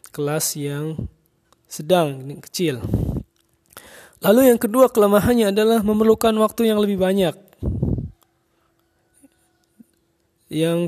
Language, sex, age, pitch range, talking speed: Indonesian, male, 20-39, 155-200 Hz, 90 wpm